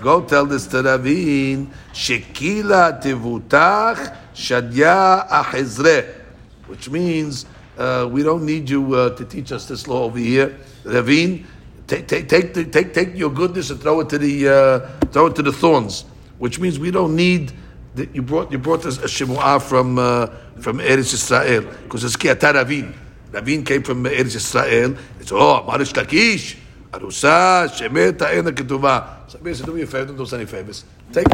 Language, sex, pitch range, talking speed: English, male, 125-165 Hz, 165 wpm